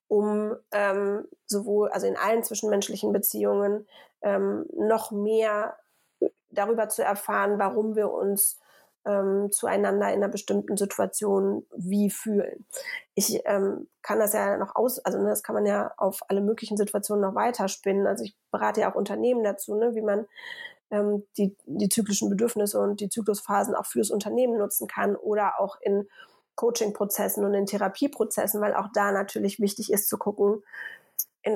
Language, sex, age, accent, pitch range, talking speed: German, female, 30-49, German, 200-220 Hz, 160 wpm